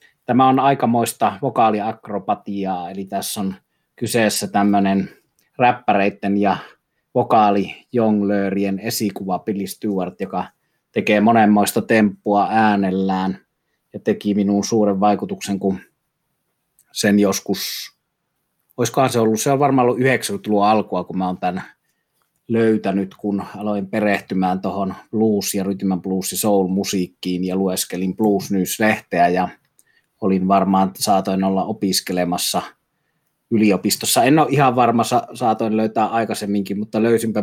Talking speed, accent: 115 wpm, native